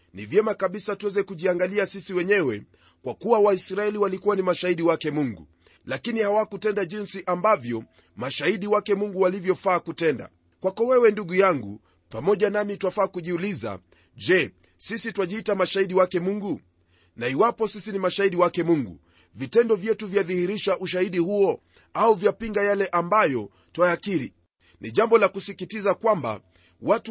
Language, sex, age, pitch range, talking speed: Swahili, male, 30-49, 160-210 Hz, 135 wpm